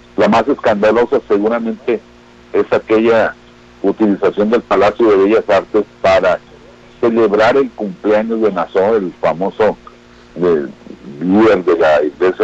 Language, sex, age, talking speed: Spanish, male, 60-79, 115 wpm